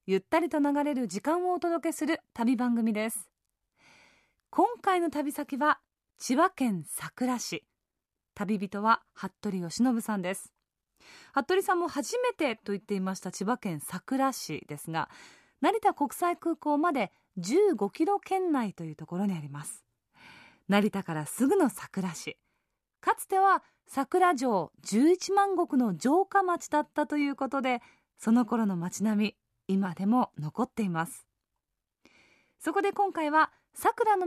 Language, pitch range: Japanese, 205-335 Hz